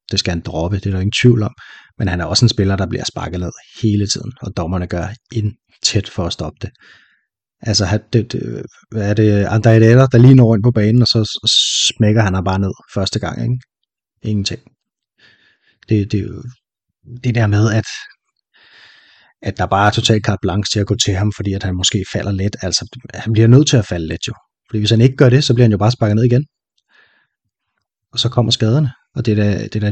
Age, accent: 30-49, native